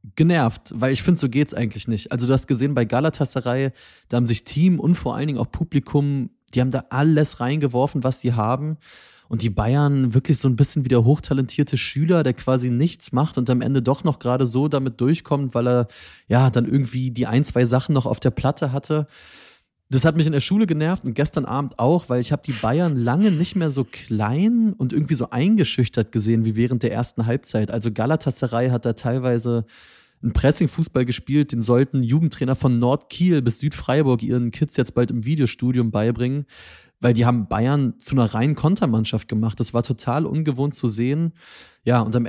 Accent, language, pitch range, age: German, German, 120-145 Hz, 20-39